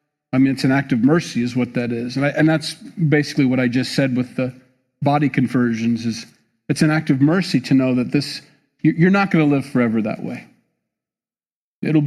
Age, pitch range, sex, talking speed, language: 40-59, 125-155 Hz, male, 215 wpm, English